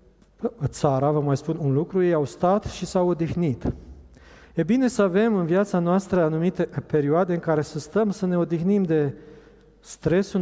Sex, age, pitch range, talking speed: male, 40-59, 150-190 Hz, 175 wpm